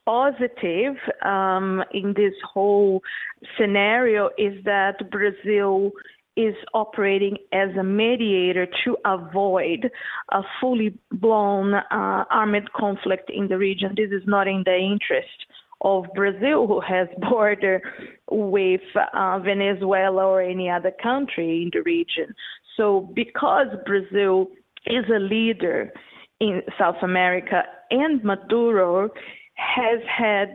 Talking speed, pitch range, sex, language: 115 wpm, 190-220 Hz, female, English